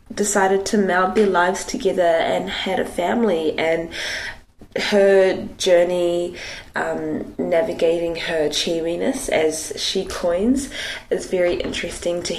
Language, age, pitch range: English, 20-39, 165-195 Hz